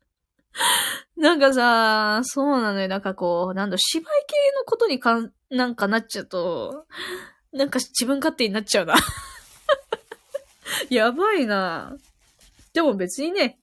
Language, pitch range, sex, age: Japanese, 190-280 Hz, female, 20-39